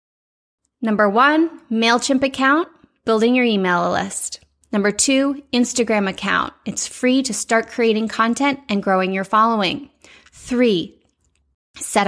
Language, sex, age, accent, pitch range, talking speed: English, female, 20-39, American, 205-260 Hz, 120 wpm